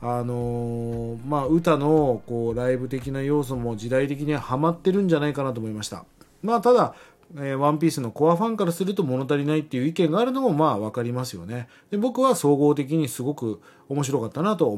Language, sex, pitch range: Japanese, male, 120-170 Hz